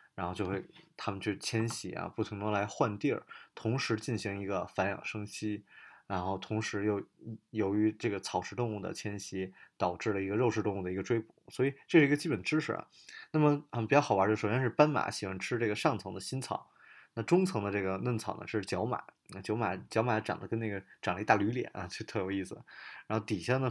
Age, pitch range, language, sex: 20-39, 100-125 Hz, Chinese, male